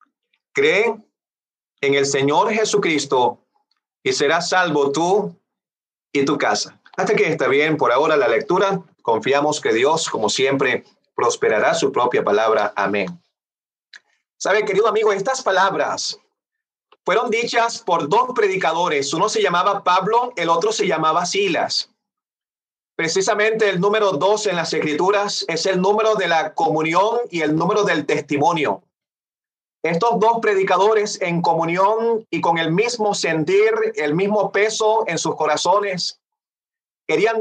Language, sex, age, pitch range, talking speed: English, male, 30-49, 175-230 Hz, 135 wpm